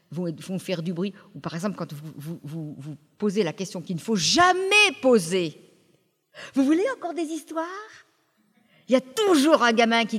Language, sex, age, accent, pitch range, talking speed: French, female, 50-69, French, 185-285 Hz, 200 wpm